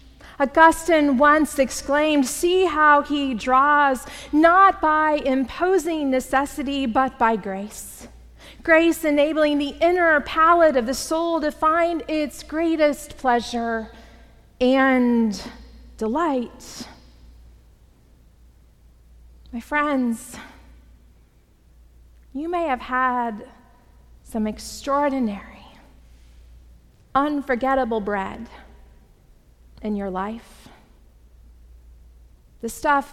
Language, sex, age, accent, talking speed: English, female, 30-49, American, 80 wpm